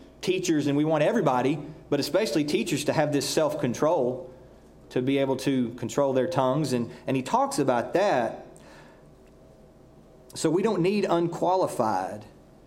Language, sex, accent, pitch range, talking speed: English, male, American, 130-180 Hz, 145 wpm